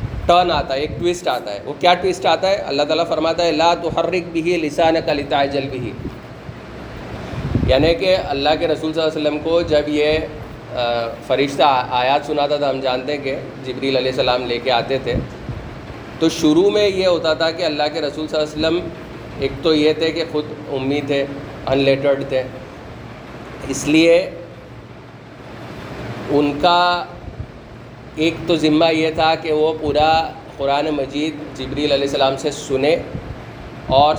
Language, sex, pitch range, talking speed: Urdu, male, 135-160 Hz, 145 wpm